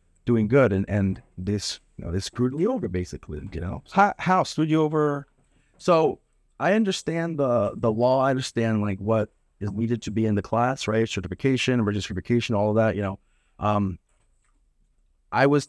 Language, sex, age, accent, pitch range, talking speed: English, male, 30-49, American, 100-130 Hz, 175 wpm